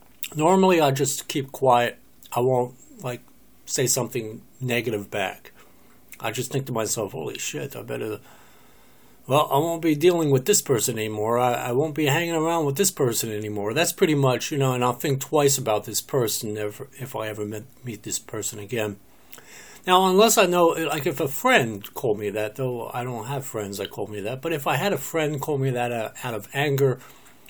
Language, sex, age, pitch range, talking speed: English, male, 60-79, 110-150 Hz, 205 wpm